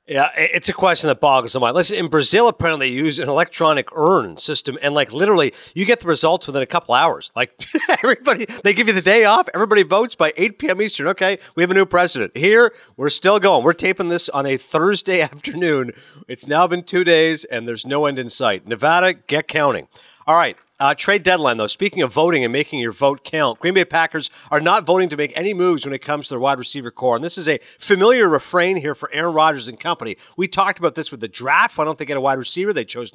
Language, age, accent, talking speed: English, 50-69, American, 245 wpm